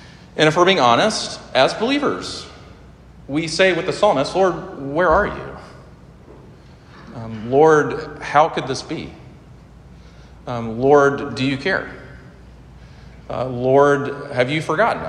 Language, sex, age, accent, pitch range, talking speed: English, male, 40-59, American, 110-130 Hz, 125 wpm